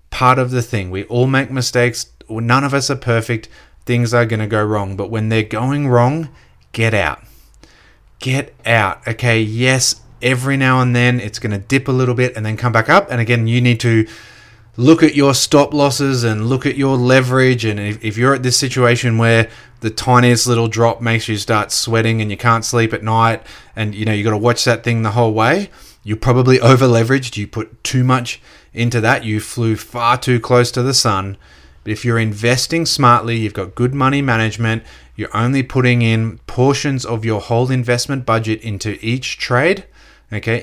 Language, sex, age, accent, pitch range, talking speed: English, male, 30-49, Australian, 110-130 Hz, 200 wpm